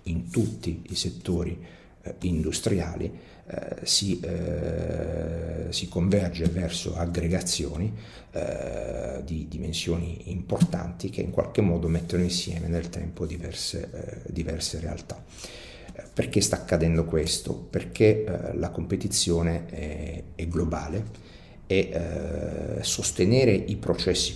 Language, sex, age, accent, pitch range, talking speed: Italian, male, 50-69, native, 85-95 Hz, 105 wpm